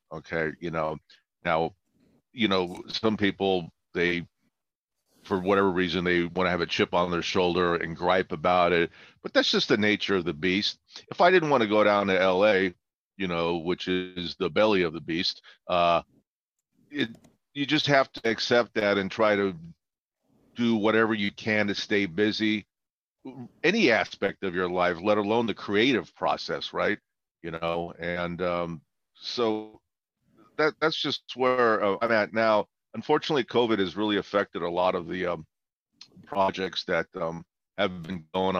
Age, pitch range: 50-69, 85-105 Hz